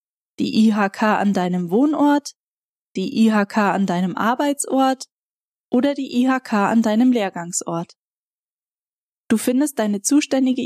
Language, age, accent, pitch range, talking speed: German, 10-29, German, 205-265 Hz, 115 wpm